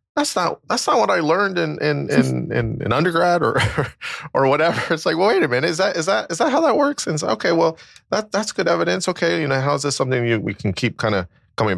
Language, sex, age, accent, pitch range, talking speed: English, male, 20-39, American, 95-135 Hz, 270 wpm